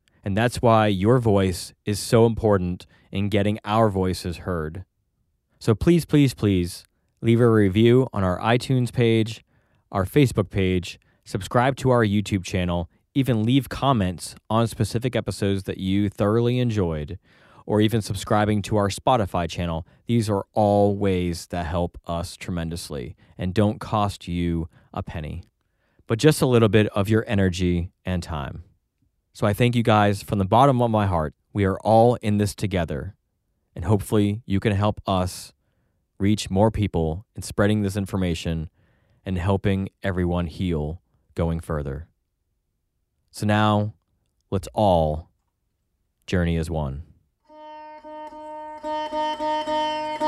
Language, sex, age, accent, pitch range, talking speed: English, male, 30-49, American, 90-115 Hz, 140 wpm